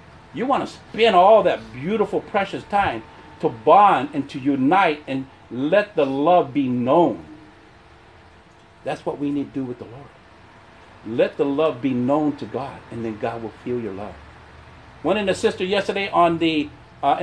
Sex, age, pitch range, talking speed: male, 50-69, 125-195 Hz, 180 wpm